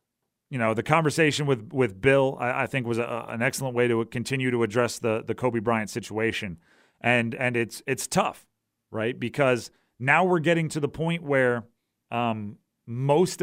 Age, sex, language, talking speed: 40-59, male, English, 180 wpm